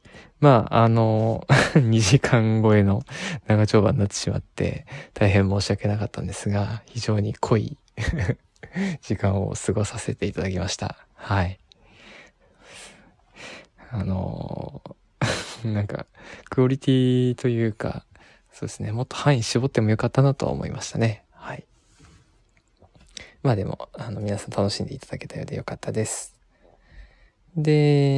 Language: Japanese